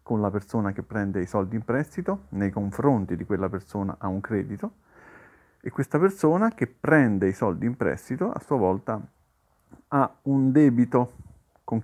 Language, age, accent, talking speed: Italian, 50-69, native, 165 wpm